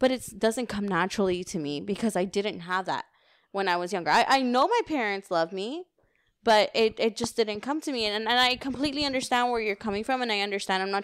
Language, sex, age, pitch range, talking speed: English, female, 20-39, 185-225 Hz, 245 wpm